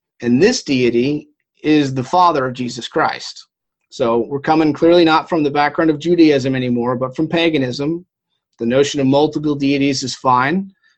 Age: 30-49